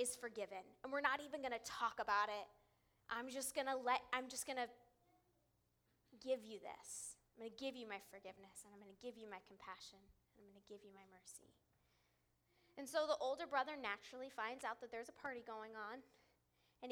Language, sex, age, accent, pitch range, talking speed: English, female, 20-39, American, 185-255 Hz, 215 wpm